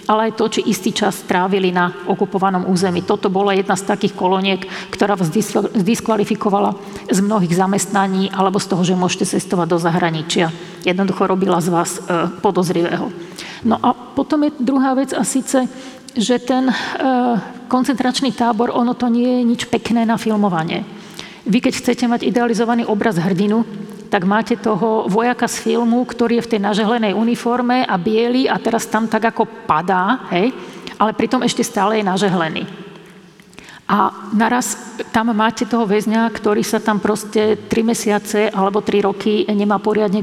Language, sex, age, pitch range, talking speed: Slovak, female, 50-69, 195-230 Hz, 160 wpm